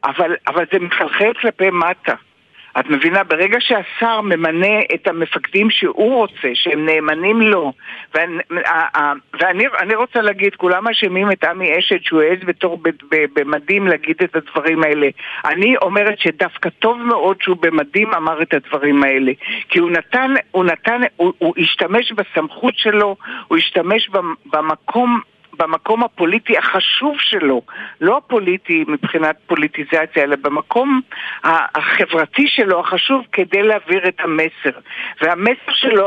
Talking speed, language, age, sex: 130 wpm, Hebrew, 60-79, male